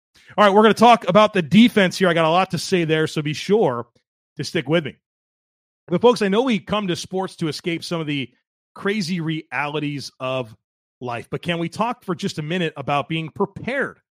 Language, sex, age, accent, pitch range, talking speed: English, male, 30-49, American, 140-180 Hz, 220 wpm